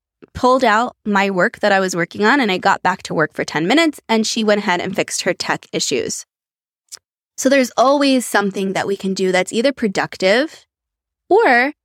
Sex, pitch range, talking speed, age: female, 180-235 Hz, 200 wpm, 20-39